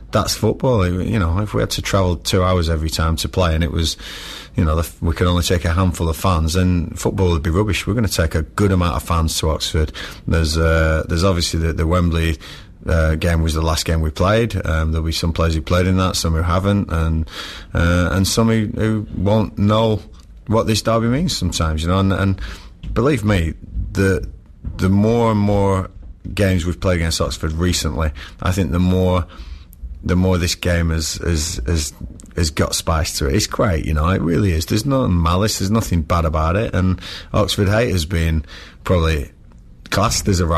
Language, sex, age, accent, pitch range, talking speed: English, male, 30-49, British, 80-95 Hz, 205 wpm